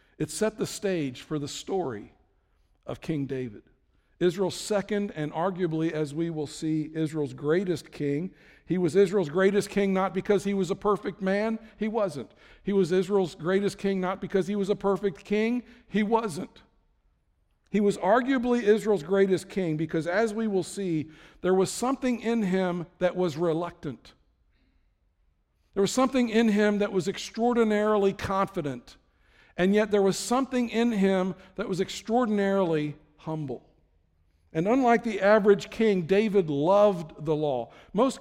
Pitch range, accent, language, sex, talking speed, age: 160-205 Hz, American, English, male, 155 wpm, 60-79